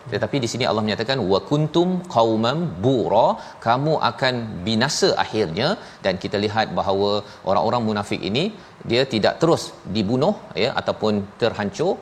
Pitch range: 105-125 Hz